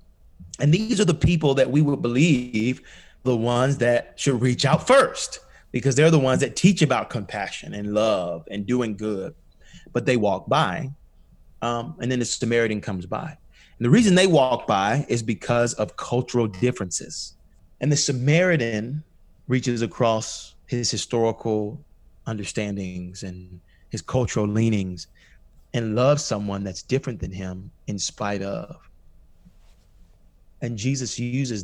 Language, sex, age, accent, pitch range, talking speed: English, male, 30-49, American, 95-130 Hz, 145 wpm